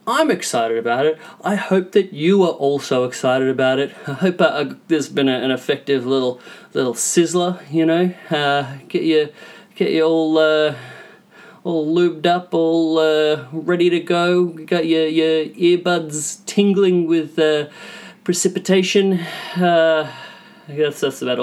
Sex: male